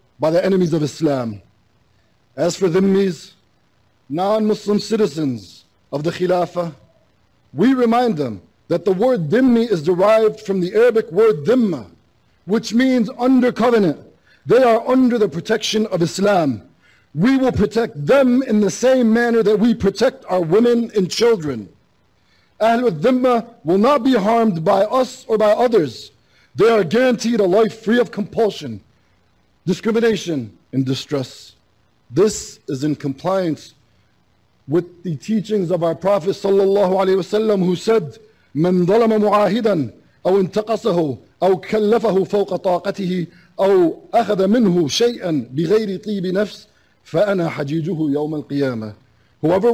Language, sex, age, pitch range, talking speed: English, male, 50-69, 160-220 Hz, 110 wpm